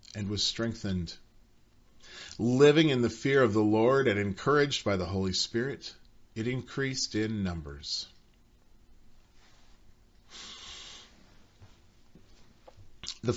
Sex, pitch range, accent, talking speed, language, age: male, 90-120 Hz, American, 95 wpm, English, 40-59